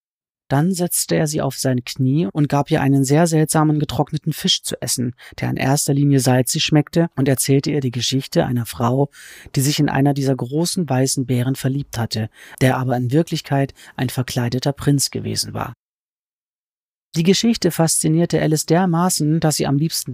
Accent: German